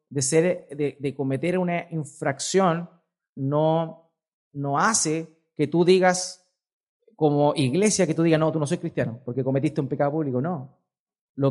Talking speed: 155 wpm